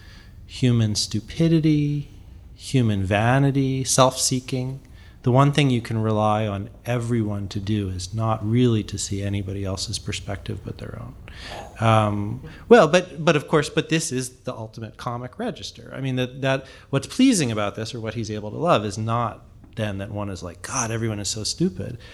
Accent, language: American, English